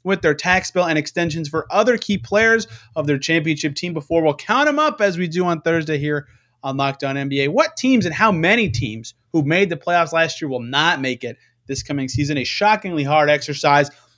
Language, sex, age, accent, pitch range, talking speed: English, male, 30-49, American, 140-200 Hz, 215 wpm